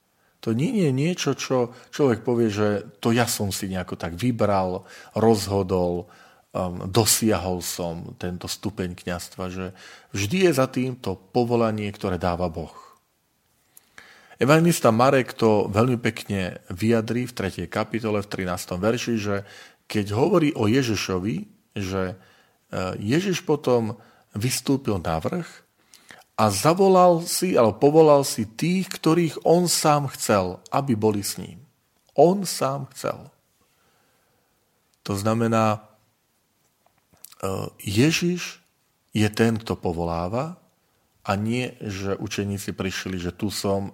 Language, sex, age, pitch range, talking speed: Slovak, male, 40-59, 95-125 Hz, 120 wpm